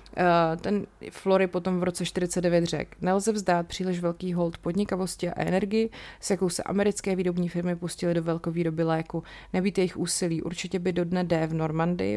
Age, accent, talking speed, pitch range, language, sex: 30-49, native, 180 wpm, 165-185 Hz, Czech, female